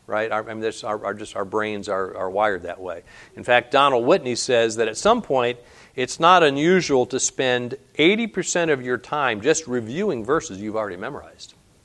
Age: 50-69